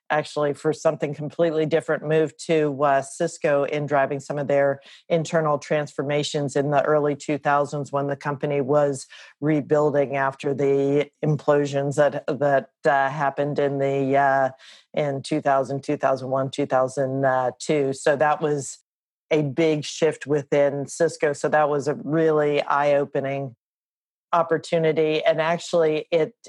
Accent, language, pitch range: American, English, 140-160 Hz